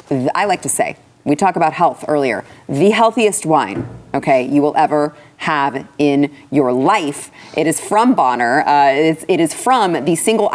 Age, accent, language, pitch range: 30-49, American, English, 150-195 Hz